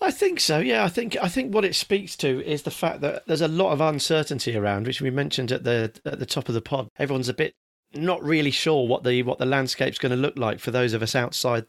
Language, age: English, 40-59